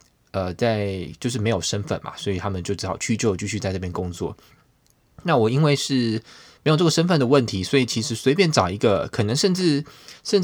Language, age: Chinese, 20-39